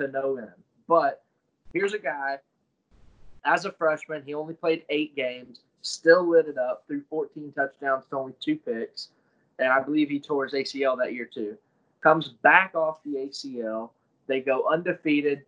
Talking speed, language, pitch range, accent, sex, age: 165 wpm, English, 135-155 Hz, American, male, 20-39